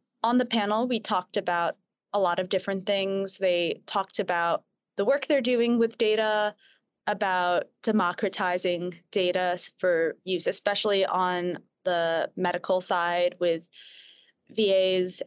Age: 20-39